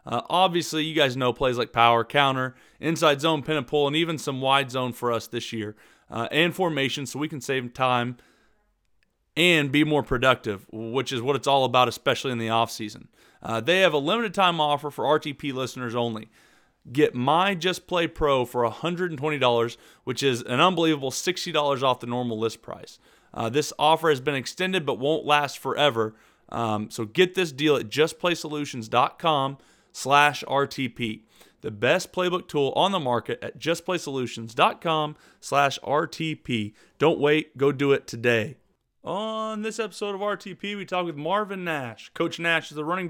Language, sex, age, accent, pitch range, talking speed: English, male, 30-49, American, 125-165 Hz, 175 wpm